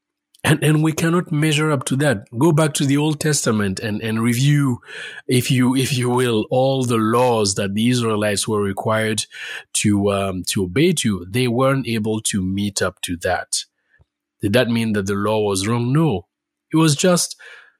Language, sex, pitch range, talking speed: English, male, 100-130 Hz, 185 wpm